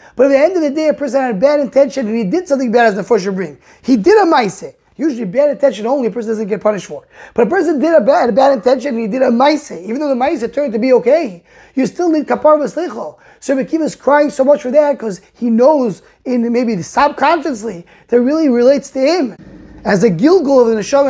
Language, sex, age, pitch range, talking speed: English, male, 20-39, 220-285 Hz, 250 wpm